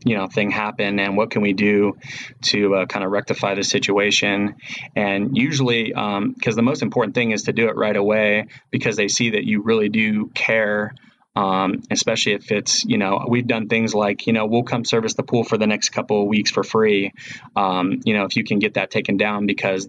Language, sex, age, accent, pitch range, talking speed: English, male, 20-39, American, 100-125 Hz, 225 wpm